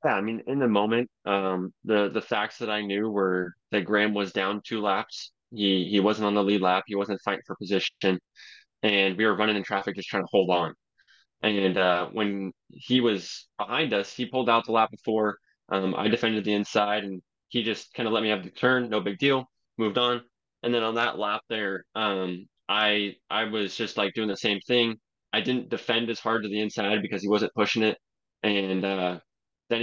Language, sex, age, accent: English, male, 20-39, American